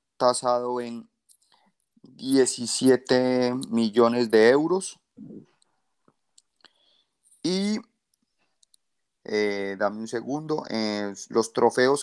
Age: 30-49